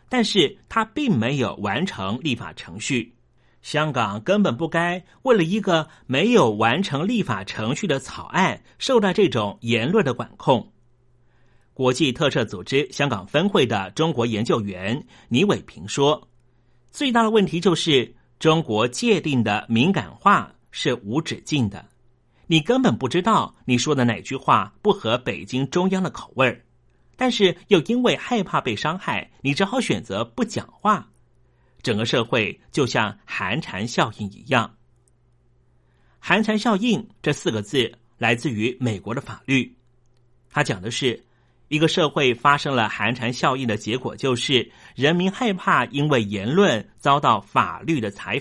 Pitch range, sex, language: 120-175 Hz, male, Chinese